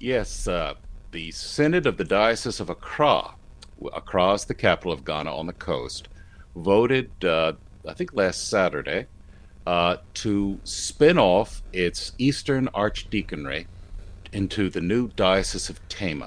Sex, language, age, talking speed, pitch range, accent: male, English, 60-79, 135 wpm, 85-105 Hz, American